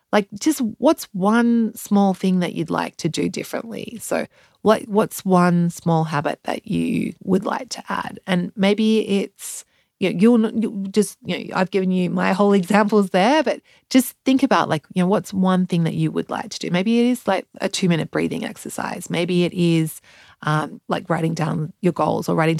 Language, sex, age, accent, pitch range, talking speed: English, female, 30-49, Australian, 170-225 Hz, 200 wpm